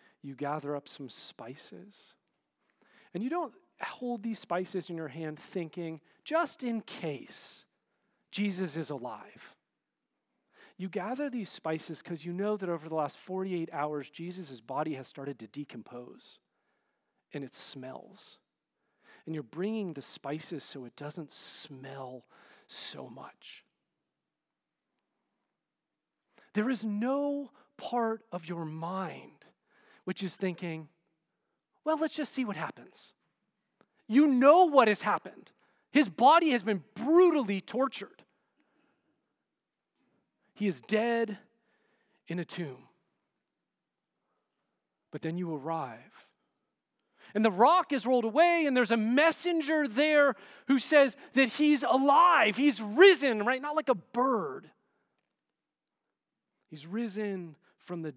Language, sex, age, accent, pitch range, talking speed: English, male, 40-59, American, 160-260 Hz, 120 wpm